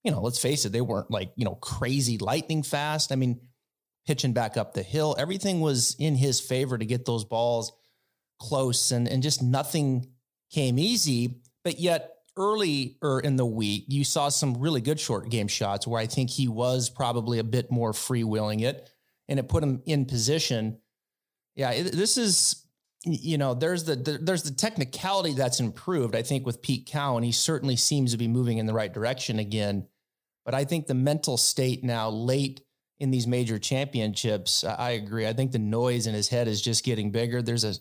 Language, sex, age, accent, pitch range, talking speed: English, male, 30-49, American, 115-140 Hz, 200 wpm